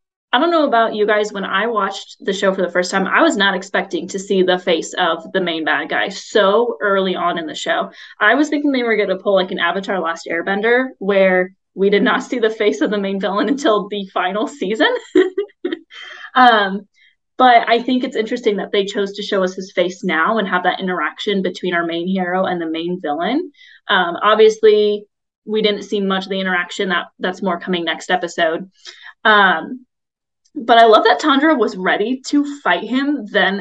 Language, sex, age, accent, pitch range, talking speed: English, female, 20-39, American, 190-240 Hz, 205 wpm